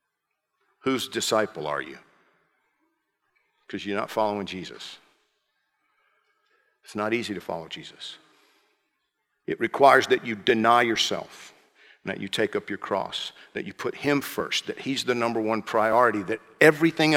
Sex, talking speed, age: male, 140 wpm, 50-69